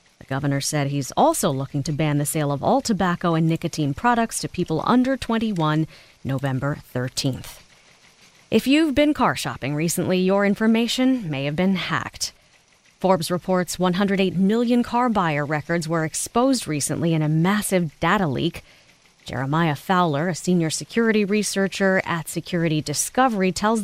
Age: 30-49